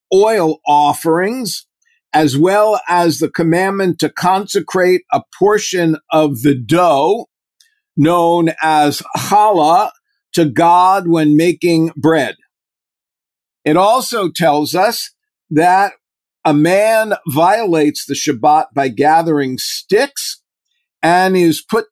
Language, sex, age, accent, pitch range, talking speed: English, male, 50-69, American, 155-215 Hz, 105 wpm